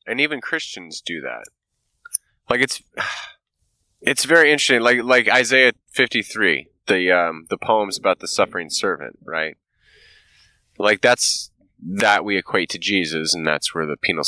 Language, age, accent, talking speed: English, 20-39, American, 145 wpm